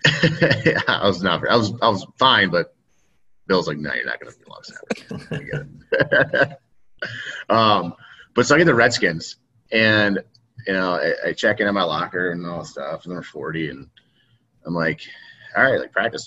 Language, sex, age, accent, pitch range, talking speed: English, male, 30-49, American, 105-150 Hz, 200 wpm